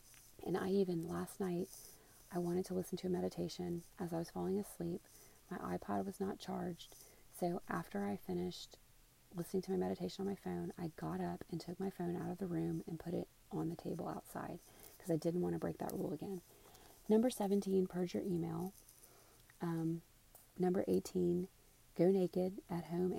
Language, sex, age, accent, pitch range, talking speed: English, female, 30-49, American, 165-190 Hz, 185 wpm